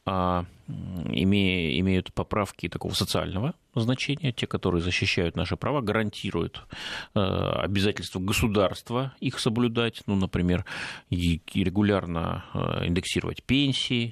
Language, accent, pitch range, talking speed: Russian, native, 90-110 Hz, 85 wpm